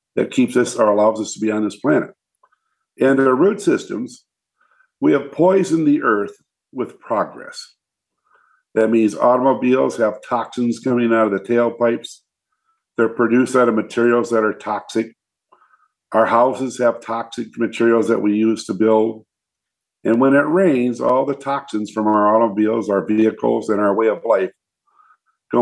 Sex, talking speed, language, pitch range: male, 160 wpm, English, 110-140 Hz